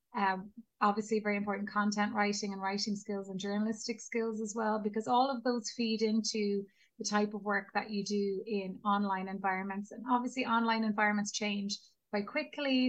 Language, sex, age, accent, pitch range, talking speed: English, female, 20-39, Irish, 200-220 Hz, 170 wpm